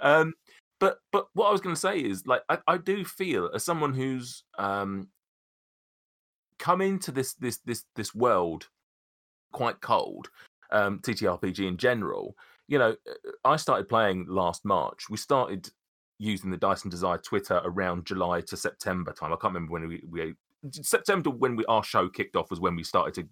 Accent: British